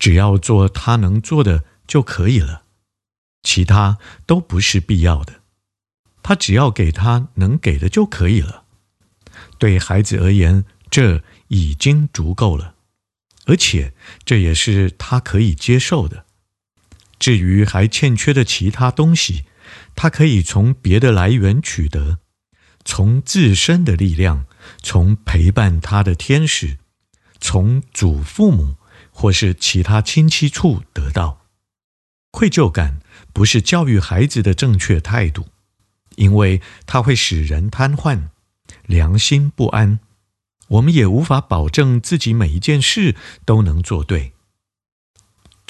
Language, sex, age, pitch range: Chinese, male, 50-69, 90-120 Hz